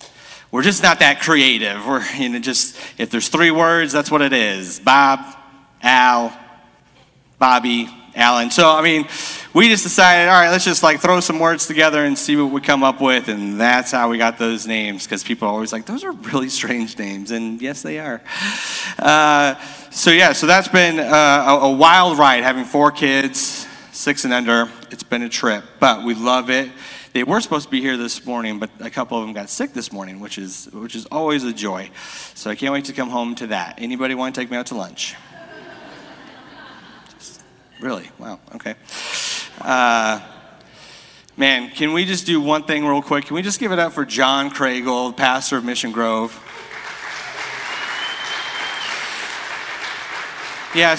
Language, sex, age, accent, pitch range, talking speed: English, male, 30-49, American, 120-160 Hz, 185 wpm